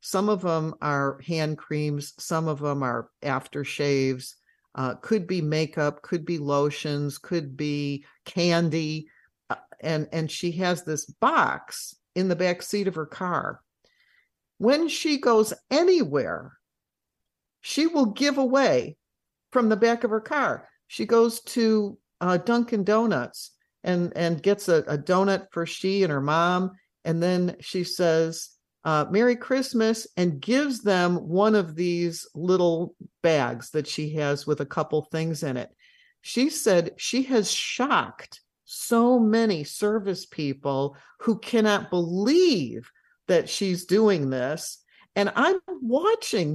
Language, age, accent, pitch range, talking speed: English, 50-69, American, 155-220 Hz, 140 wpm